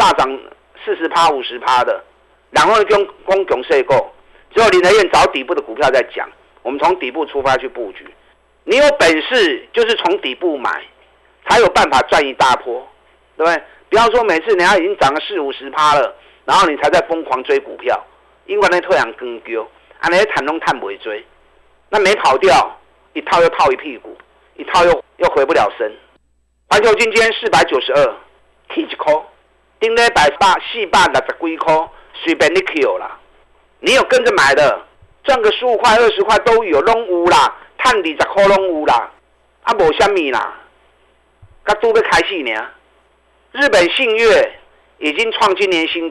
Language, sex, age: Chinese, male, 50-69